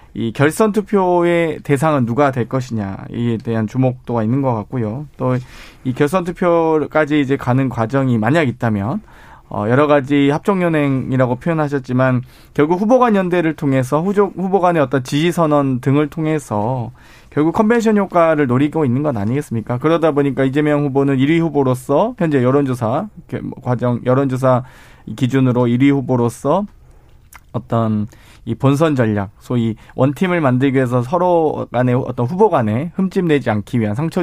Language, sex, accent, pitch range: Korean, male, native, 125-160 Hz